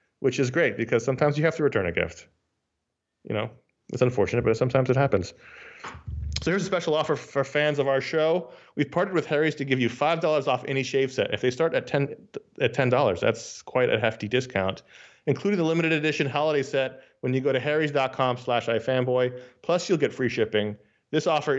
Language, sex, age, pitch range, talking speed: English, male, 30-49, 120-150 Hz, 200 wpm